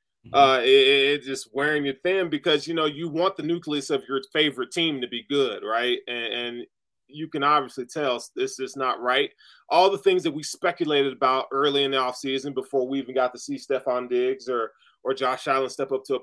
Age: 30-49